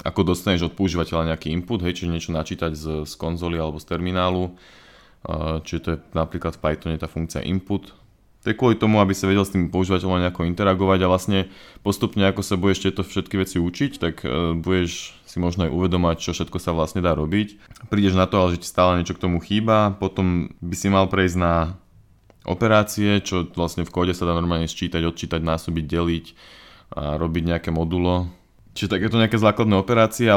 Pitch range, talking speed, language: 85-100 Hz, 195 wpm, Slovak